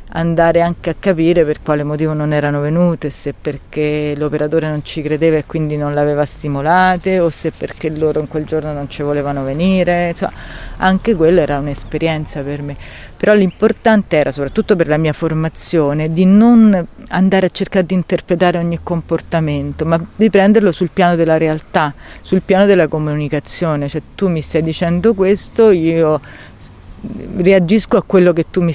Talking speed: 165 wpm